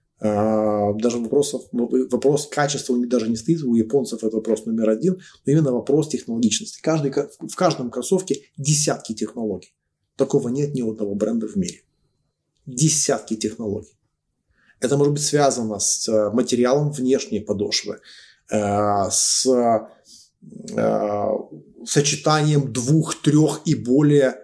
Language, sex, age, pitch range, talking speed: Romanian, male, 20-39, 110-140 Hz, 115 wpm